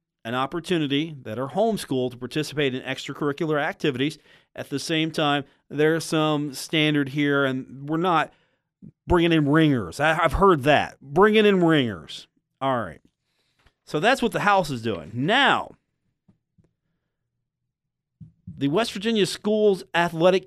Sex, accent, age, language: male, American, 40-59, English